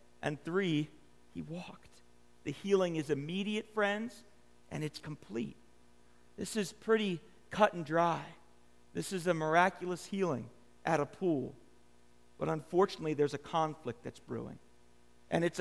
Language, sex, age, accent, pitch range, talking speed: English, male, 50-69, American, 130-195 Hz, 135 wpm